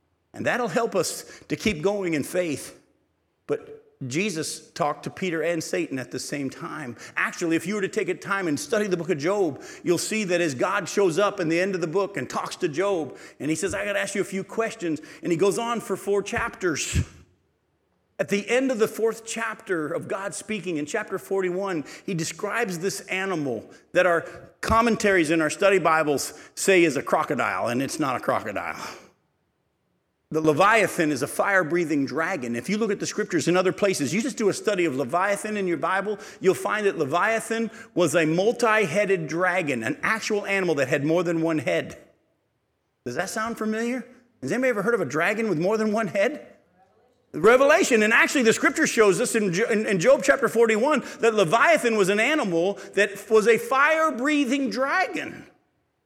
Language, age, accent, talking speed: English, 50-69, American, 195 wpm